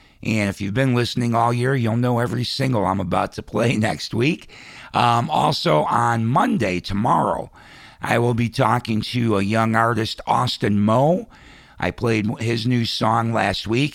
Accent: American